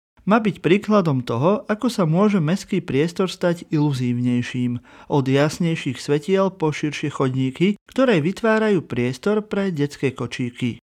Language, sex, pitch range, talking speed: Slovak, male, 130-185 Hz, 125 wpm